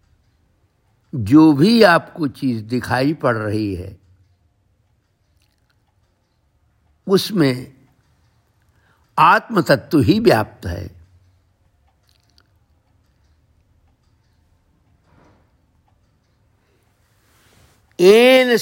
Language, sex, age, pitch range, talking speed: Hindi, male, 60-79, 100-155 Hz, 45 wpm